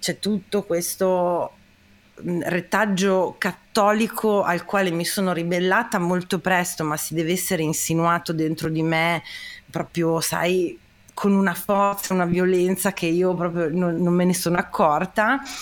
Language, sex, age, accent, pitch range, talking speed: Italian, female, 30-49, native, 165-210 Hz, 140 wpm